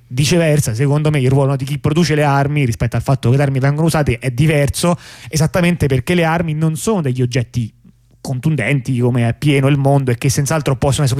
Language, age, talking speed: Italian, 30-49, 215 wpm